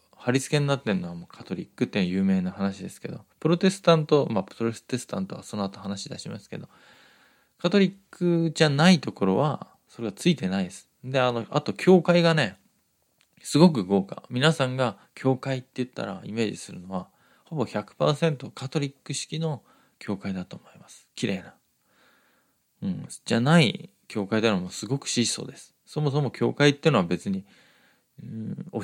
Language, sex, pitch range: Japanese, male, 110-165 Hz